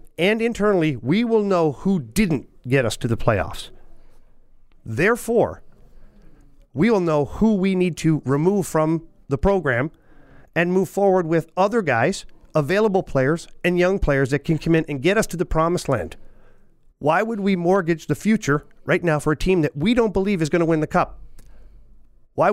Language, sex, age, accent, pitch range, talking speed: English, male, 40-59, American, 135-185 Hz, 180 wpm